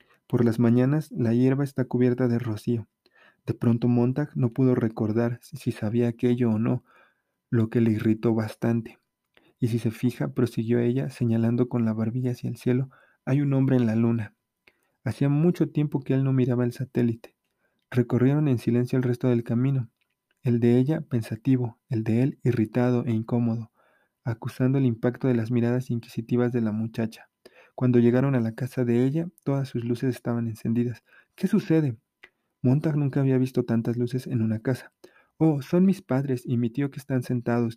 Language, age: Spanish, 40-59